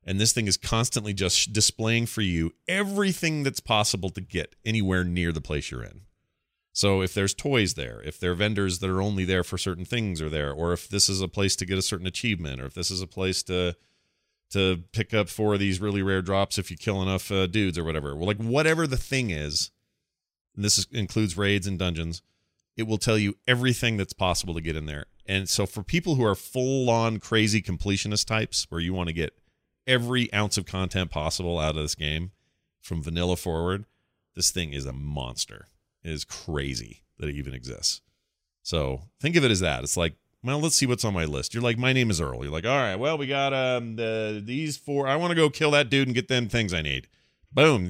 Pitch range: 85-120 Hz